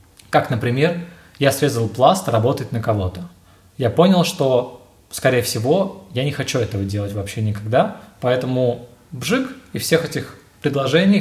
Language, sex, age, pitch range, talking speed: Russian, male, 20-39, 110-140 Hz, 140 wpm